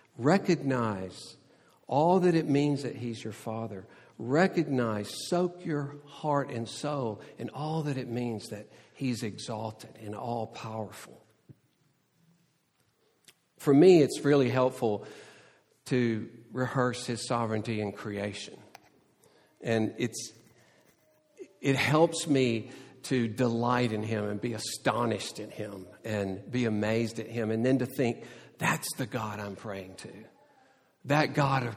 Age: 50-69